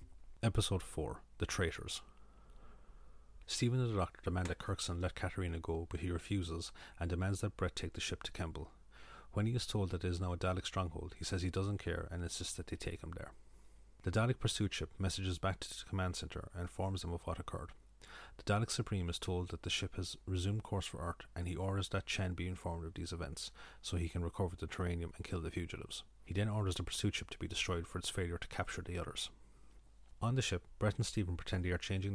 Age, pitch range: 30-49, 85-100 Hz